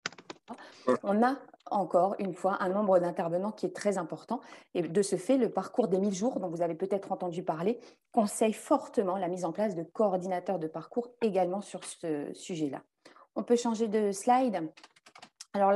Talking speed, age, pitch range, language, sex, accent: 180 wpm, 30-49, 185-230 Hz, French, female, French